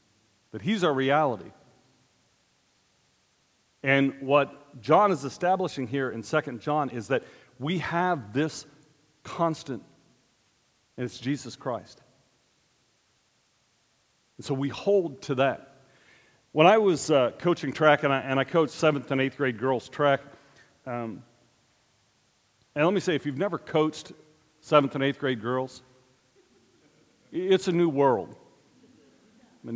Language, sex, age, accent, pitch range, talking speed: English, male, 40-59, American, 125-155 Hz, 130 wpm